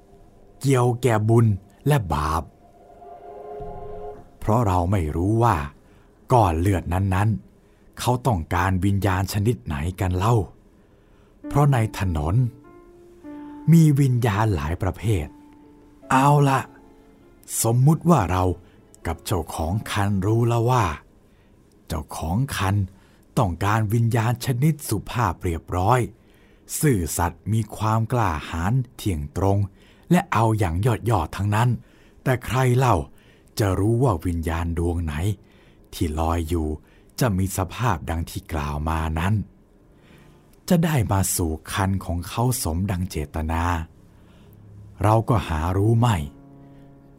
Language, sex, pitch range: Thai, male, 90-120 Hz